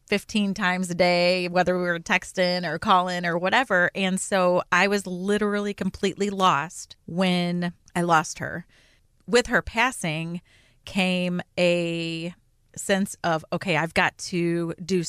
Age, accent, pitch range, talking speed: 30-49, American, 165-190 Hz, 140 wpm